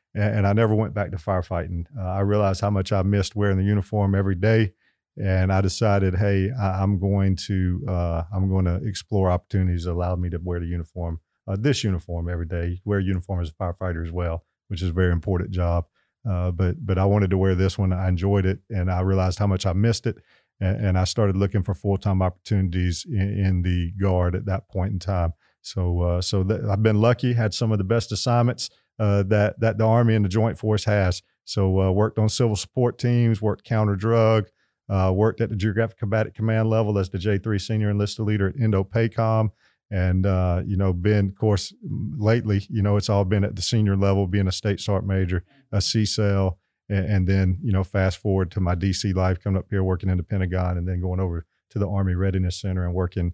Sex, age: male, 40-59